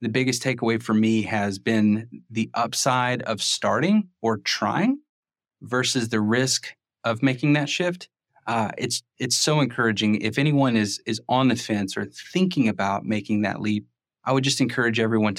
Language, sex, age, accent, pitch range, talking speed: English, male, 30-49, American, 105-125 Hz, 170 wpm